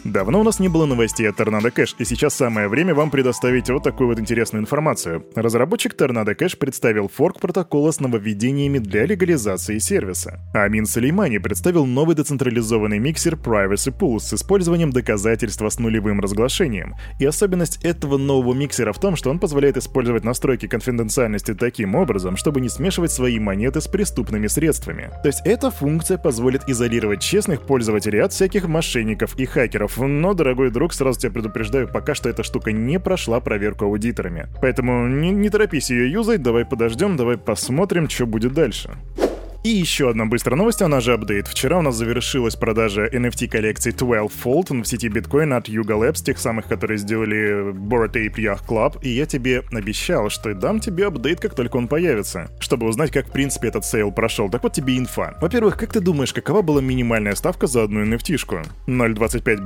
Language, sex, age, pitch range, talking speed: Russian, male, 20-39, 110-150 Hz, 175 wpm